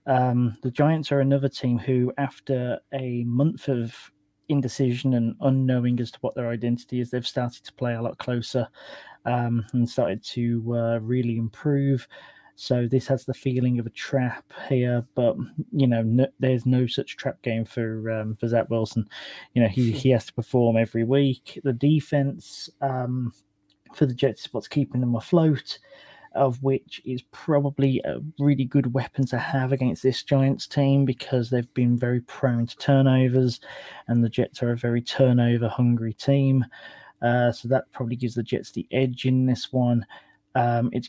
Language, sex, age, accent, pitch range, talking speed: English, male, 20-39, British, 115-135 Hz, 175 wpm